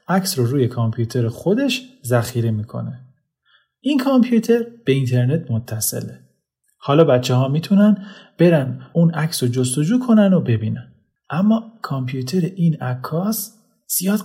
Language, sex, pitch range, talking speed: Persian, male, 125-195 Hz, 120 wpm